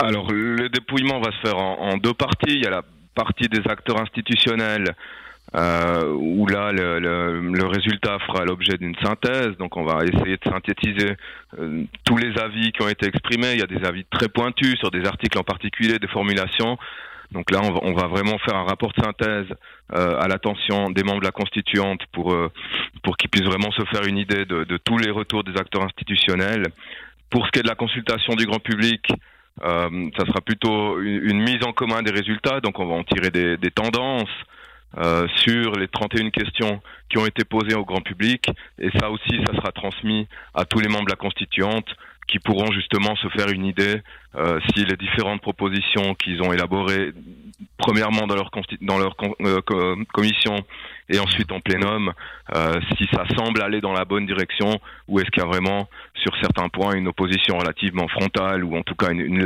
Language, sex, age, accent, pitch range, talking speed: French, male, 30-49, French, 95-110 Hz, 205 wpm